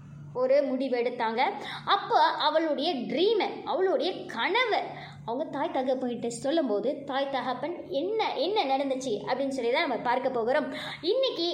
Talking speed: 130 wpm